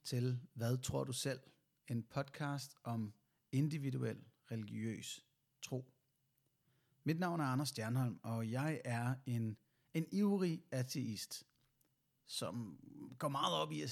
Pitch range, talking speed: 120-140 Hz, 125 wpm